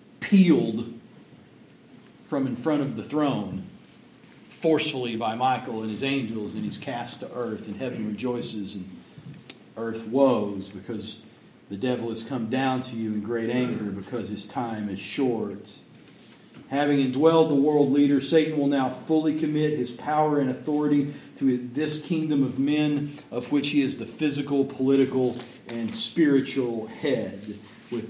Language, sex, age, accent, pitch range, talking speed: English, male, 50-69, American, 115-150 Hz, 150 wpm